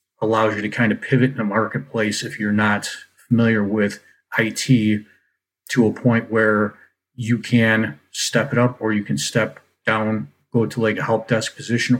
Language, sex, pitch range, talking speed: English, male, 105-120 Hz, 180 wpm